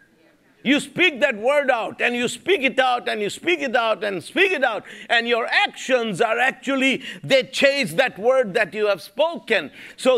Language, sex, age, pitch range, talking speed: English, male, 50-69, 230-300 Hz, 195 wpm